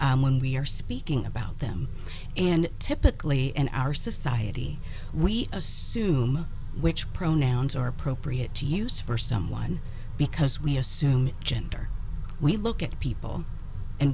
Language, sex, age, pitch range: English, female, 40-59, 120-145 Hz